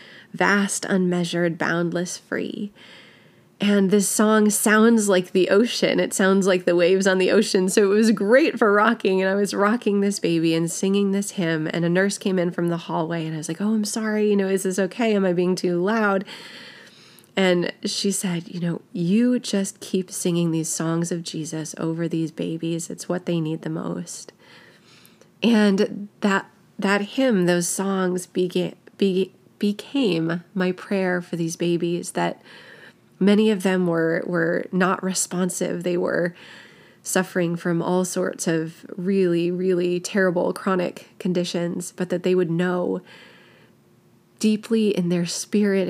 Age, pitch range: 30-49, 175-200 Hz